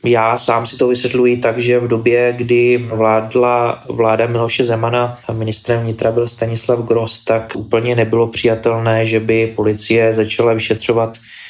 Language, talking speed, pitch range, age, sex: Czech, 150 wpm, 110-115 Hz, 20-39, male